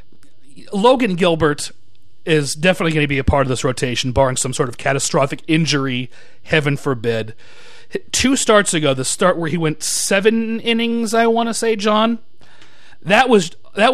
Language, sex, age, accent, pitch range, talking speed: English, male, 40-59, American, 135-185 Hz, 165 wpm